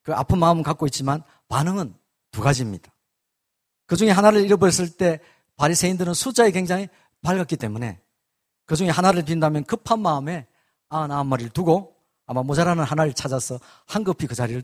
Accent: native